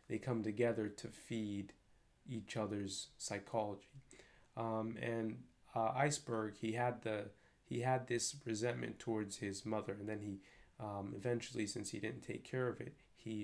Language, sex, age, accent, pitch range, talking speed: English, male, 20-39, American, 105-120 Hz, 155 wpm